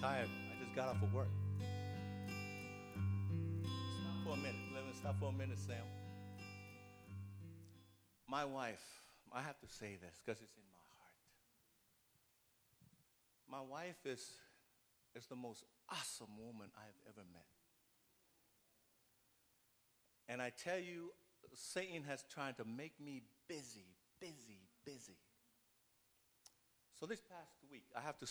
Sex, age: male, 50-69